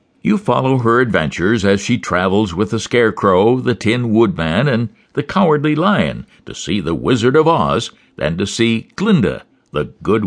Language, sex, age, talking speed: English, male, 60-79, 170 wpm